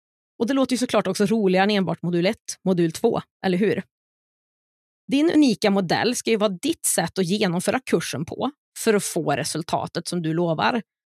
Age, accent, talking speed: 30-49, native, 185 wpm